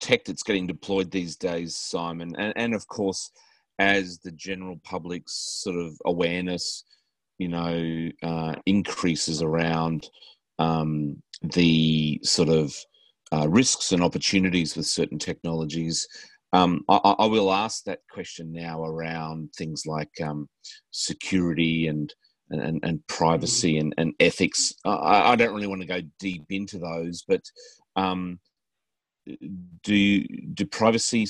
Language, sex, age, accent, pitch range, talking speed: English, male, 30-49, Australian, 80-100 Hz, 130 wpm